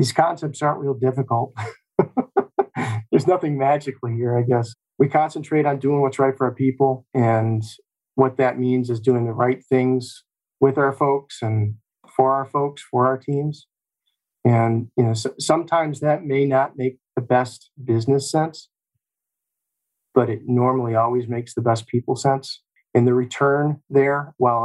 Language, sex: English, male